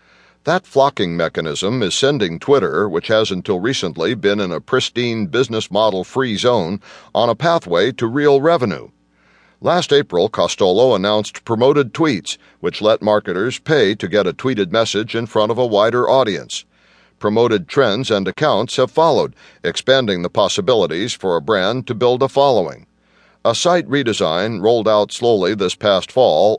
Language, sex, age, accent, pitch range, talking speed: English, male, 60-79, American, 105-135 Hz, 155 wpm